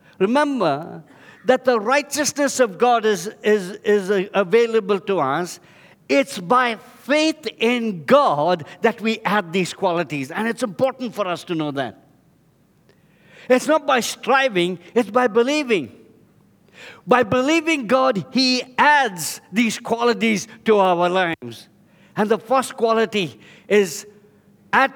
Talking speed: 125 wpm